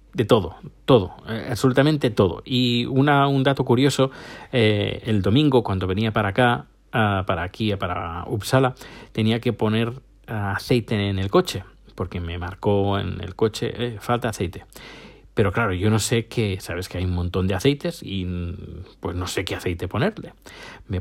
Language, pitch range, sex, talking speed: Spanish, 100-125 Hz, male, 175 wpm